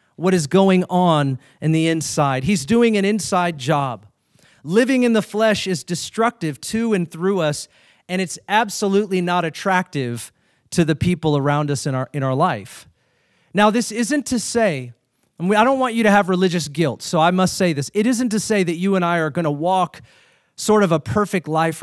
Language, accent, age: English, American, 40-59